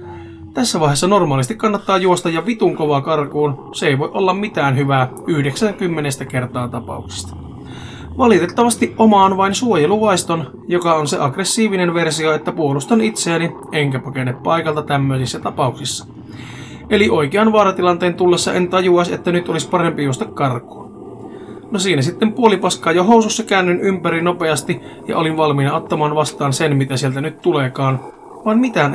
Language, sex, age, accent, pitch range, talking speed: Finnish, male, 20-39, native, 140-185 Hz, 145 wpm